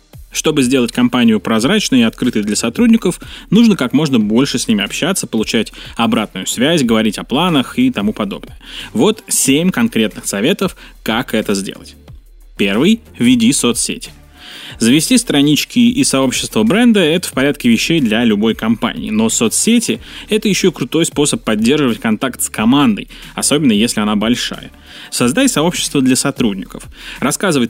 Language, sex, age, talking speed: Russian, male, 20-39, 145 wpm